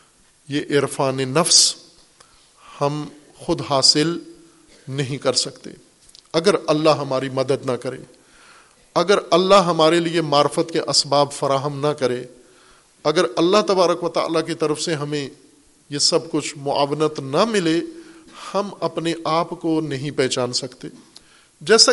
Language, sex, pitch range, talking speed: Urdu, male, 145-180 Hz, 130 wpm